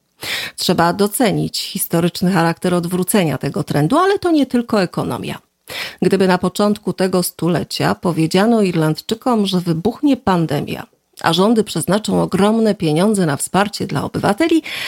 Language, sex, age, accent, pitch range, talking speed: Polish, female, 40-59, native, 165-210 Hz, 125 wpm